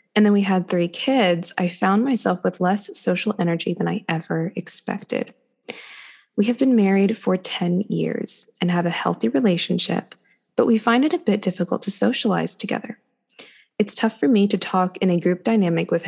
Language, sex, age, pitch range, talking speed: English, female, 20-39, 180-225 Hz, 185 wpm